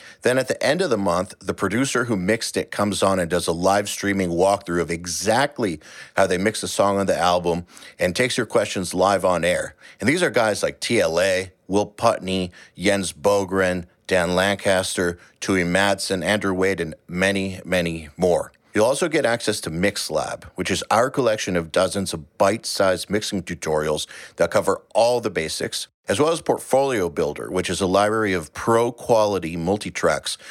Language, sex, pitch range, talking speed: English, male, 90-105 Hz, 175 wpm